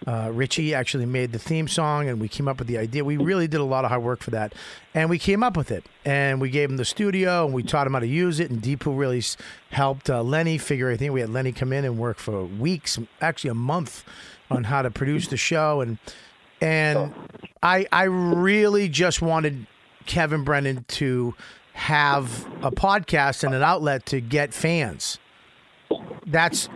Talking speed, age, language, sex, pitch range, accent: 205 wpm, 40-59, English, male, 135-180 Hz, American